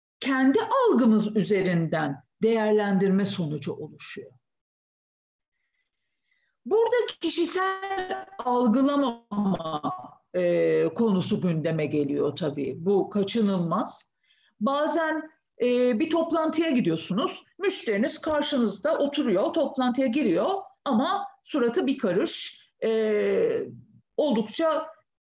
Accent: native